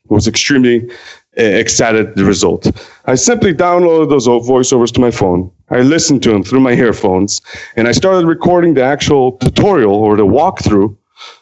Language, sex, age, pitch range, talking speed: English, male, 30-49, 110-145 Hz, 160 wpm